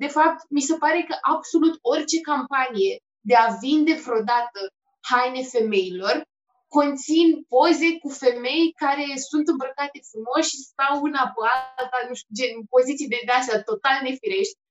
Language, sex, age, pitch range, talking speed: Romanian, female, 20-39, 255-325 Hz, 150 wpm